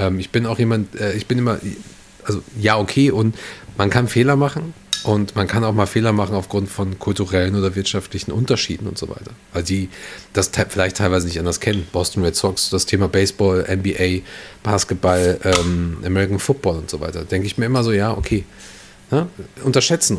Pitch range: 90-110 Hz